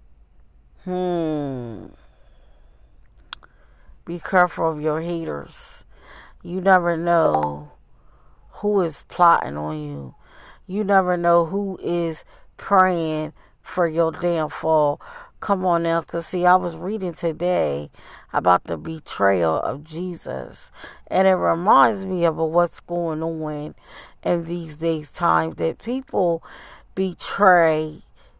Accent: American